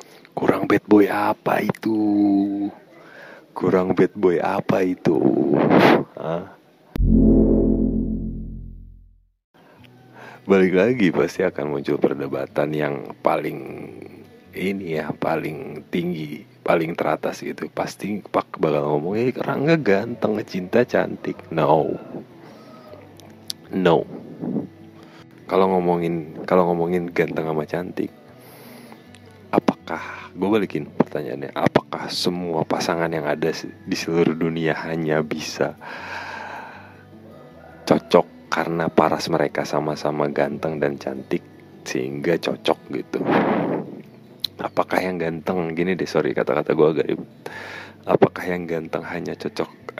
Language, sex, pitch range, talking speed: Indonesian, male, 75-95 Hz, 100 wpm